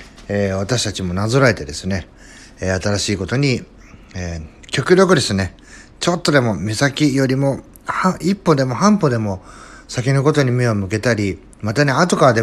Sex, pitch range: male, 95-130 Hz